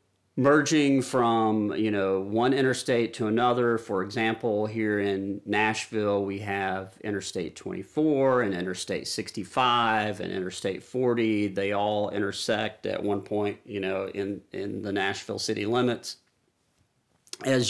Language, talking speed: English, 130 wpm